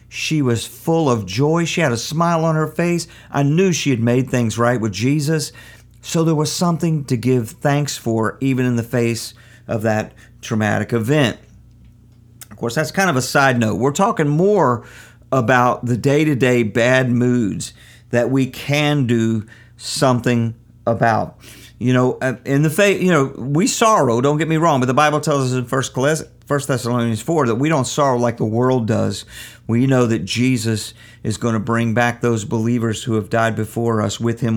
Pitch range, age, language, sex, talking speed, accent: 115-135 Hz, 50-69, English, male, 190 wpm, American